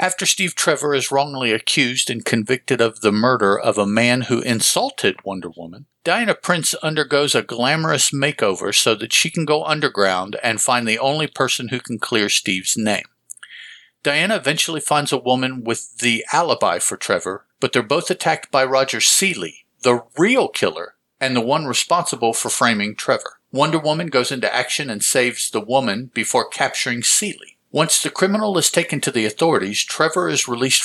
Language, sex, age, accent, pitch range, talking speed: English, male, 50-69, American, 115-155 Hz, 175 wpm